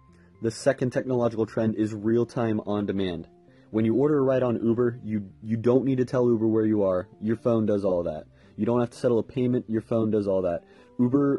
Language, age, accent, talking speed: English, 20-39, American, 220 wpm